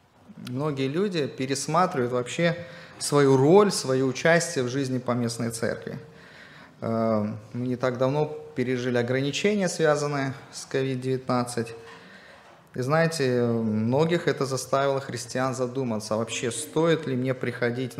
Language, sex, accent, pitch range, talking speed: Russian, male, native, 115-145 Hz, 115 wpm